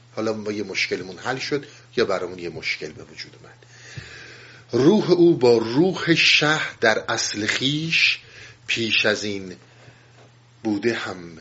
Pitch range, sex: 105-125 Hz, male